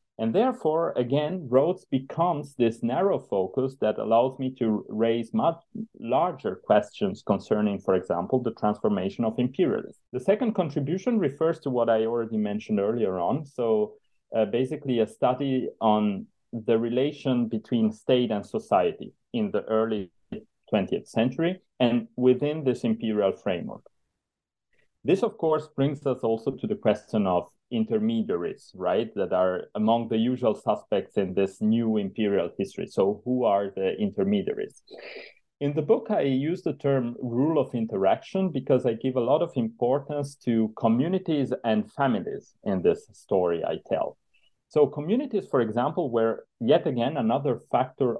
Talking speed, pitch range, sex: 150 wpm, 115-165 Hz, male